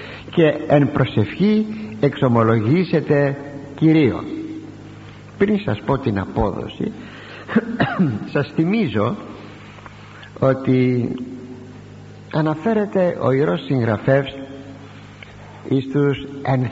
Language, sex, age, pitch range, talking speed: Greek, male, 50-69, 110-150 Hz, 70 wpm